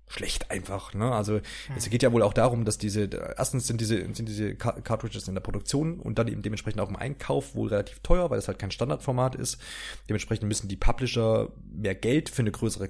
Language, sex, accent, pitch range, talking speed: German, male, German, 105-125 Hz, 215 wpm